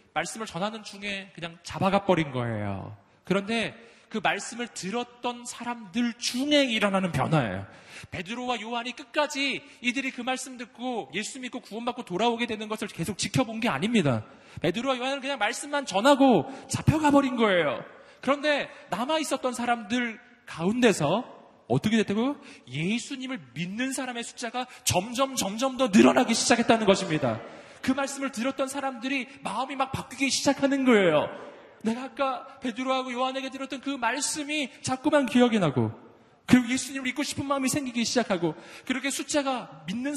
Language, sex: Korean, male